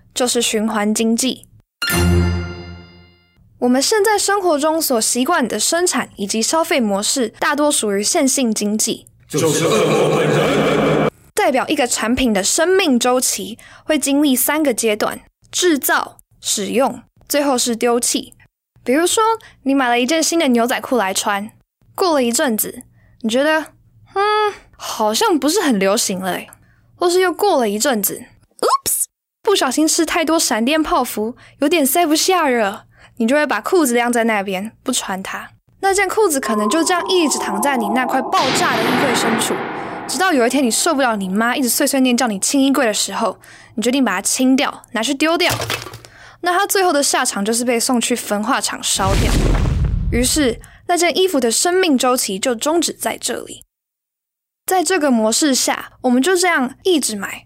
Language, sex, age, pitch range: English, female, 10-29, 220-320 Hz